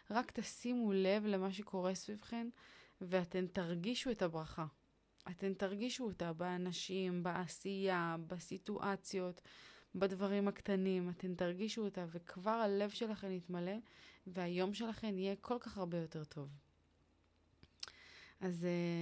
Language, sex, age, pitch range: Hebrew, female, 20-39, 170-205 Hz